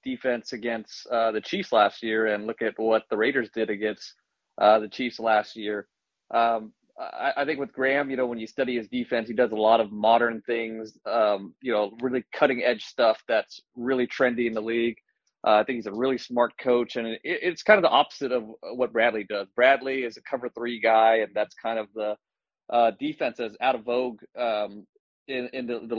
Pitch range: 110-125 Hz